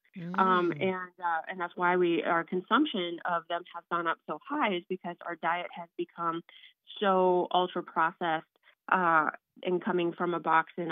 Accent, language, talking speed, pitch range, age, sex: American, English, 175 wpm, 175-205 Hz, 30-49, female